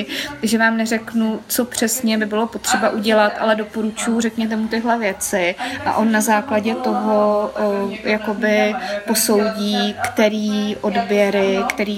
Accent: native